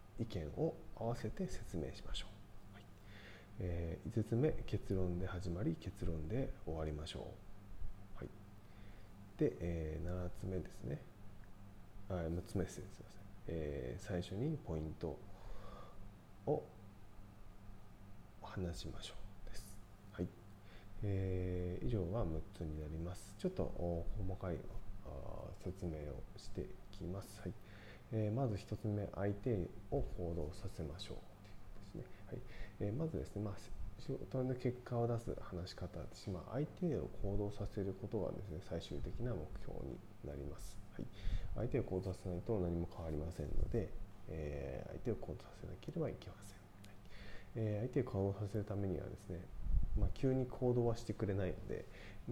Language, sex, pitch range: Japanese, male, 90-105 Hz